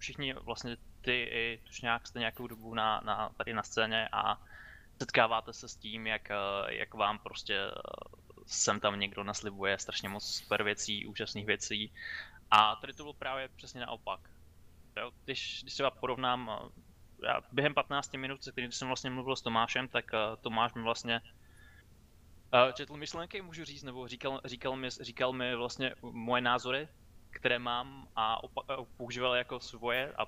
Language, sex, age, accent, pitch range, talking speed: Czech, male, 20-39, native, 110-130 Hz, 160 wpm